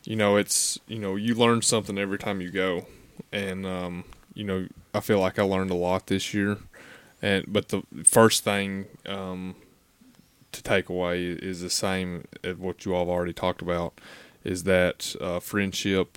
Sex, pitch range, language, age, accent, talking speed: male, 90-100 Hz, English, 20-39, American, 180 wpm